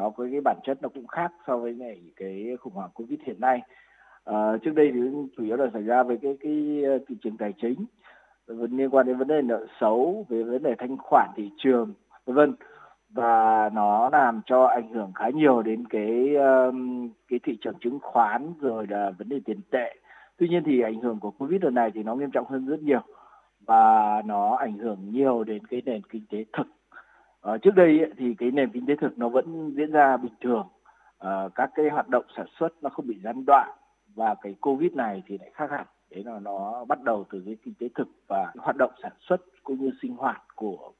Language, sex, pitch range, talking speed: Vietnamese, male, 110-145 Hz, 220 wpm